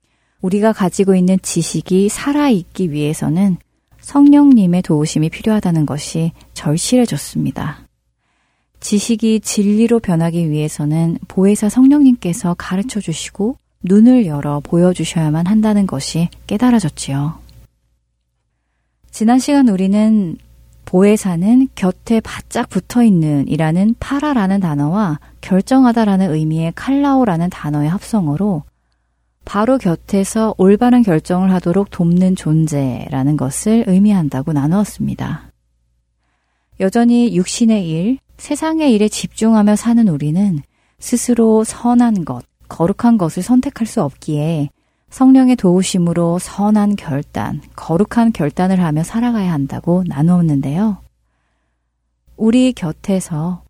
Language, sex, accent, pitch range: Korean, female, native, 155-220 Hz